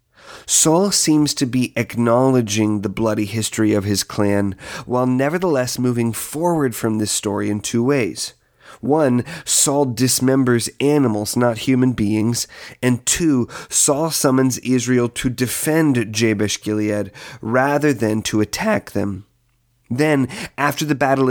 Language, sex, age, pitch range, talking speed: English, male, 30-49, 110-135 Hz, 130 wpm